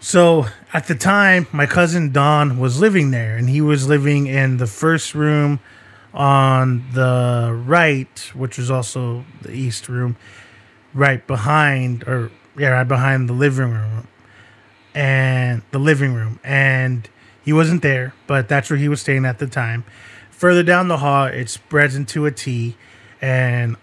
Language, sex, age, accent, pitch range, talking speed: English, male, 20-39, American, 120-145 Hz, 160 wpm